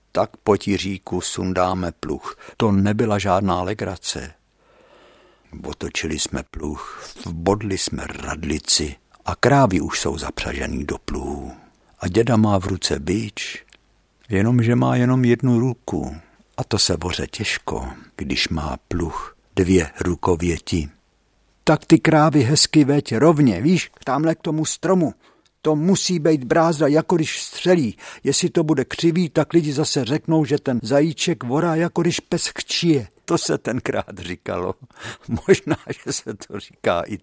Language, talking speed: Czech, 140 wpm